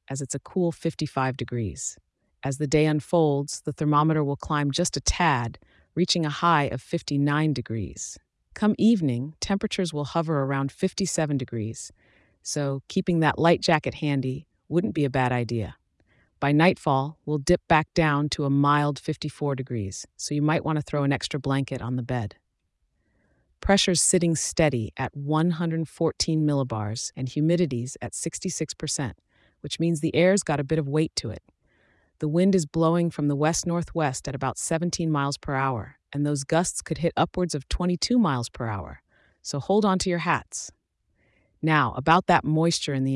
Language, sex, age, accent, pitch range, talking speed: English, female, 40-59, American, 130-165 Hz, 170 wpm